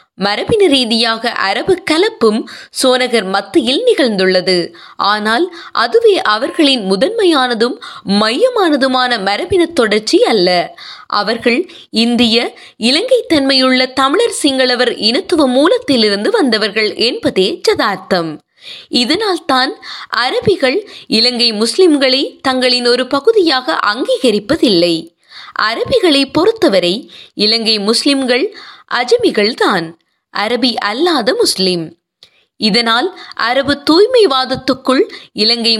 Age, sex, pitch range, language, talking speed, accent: 20-39, female, 220-350 Hz, Tamil, 70 wpm, native